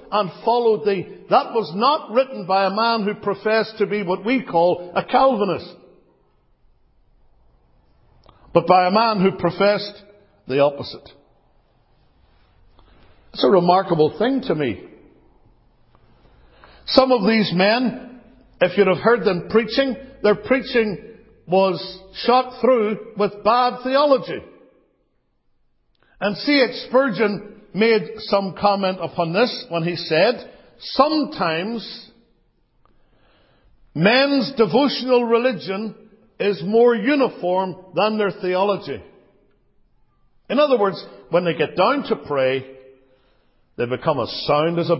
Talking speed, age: 115 wpm, 60-79